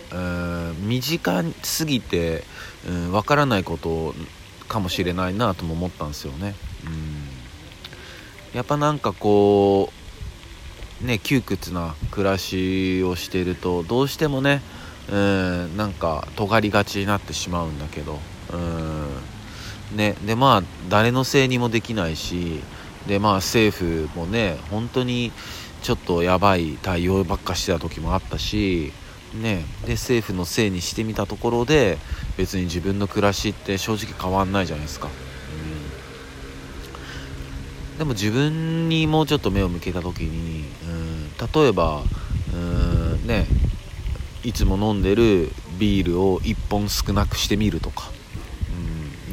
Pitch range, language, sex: 85-105 Hz, Japanese, male